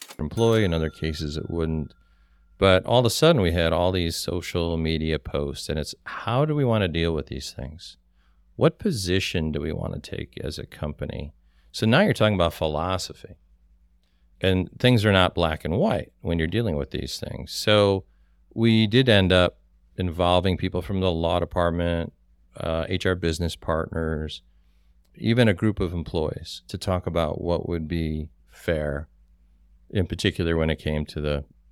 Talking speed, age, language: 175 wpm, 40-59, English